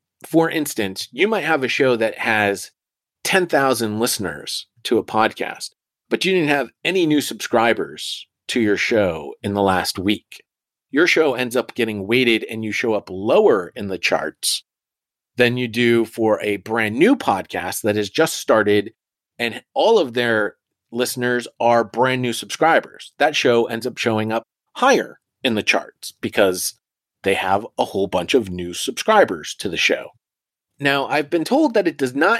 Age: 30-49